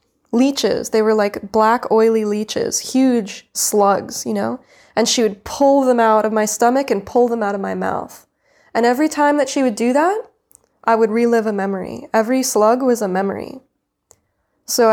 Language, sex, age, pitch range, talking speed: English, female, 20-39, 200-235 Hz, 185 wpm